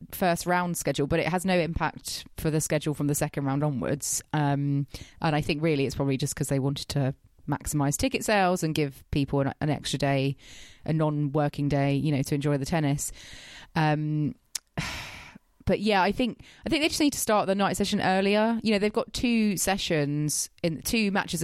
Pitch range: 145-180 Hz